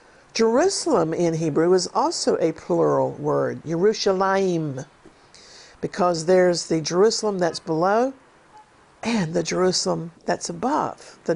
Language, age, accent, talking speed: English, 50-69, American, 110 wpm